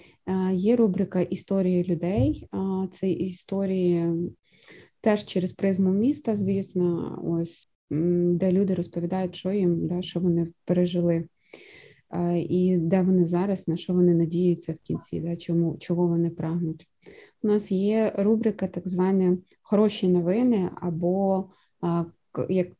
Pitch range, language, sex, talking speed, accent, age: 170-195 Hz, Ukrainian, female, 120 wpm, native, 20-39